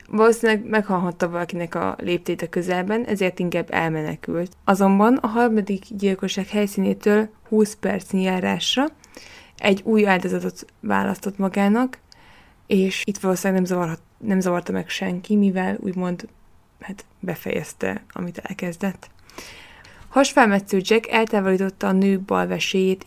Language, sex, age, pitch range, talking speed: Hungarian, female, 20-39, 185-215 Hz, 110 wpm